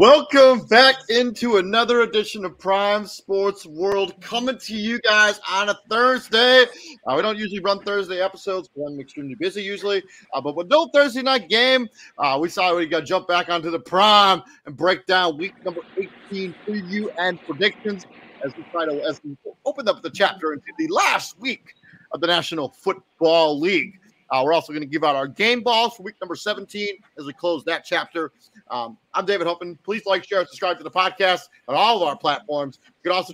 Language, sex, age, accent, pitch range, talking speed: English, male, 30-49, American, 170-230 Hz, 200 wpm